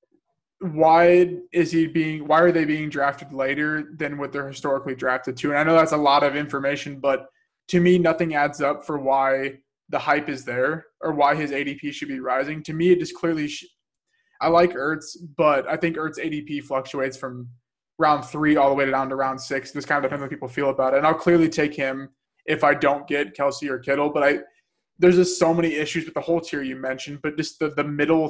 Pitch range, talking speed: 135-160 Hz, 230 wpm